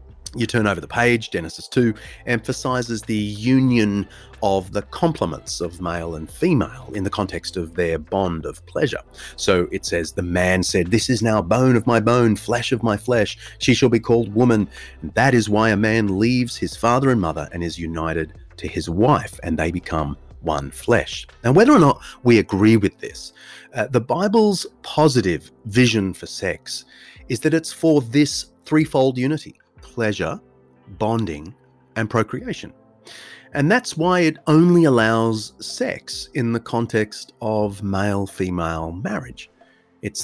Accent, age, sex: Australian, 30-49, male